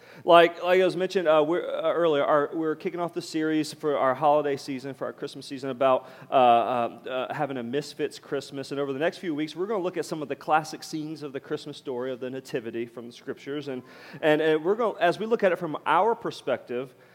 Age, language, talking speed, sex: 40-59, English, 240 wpm, male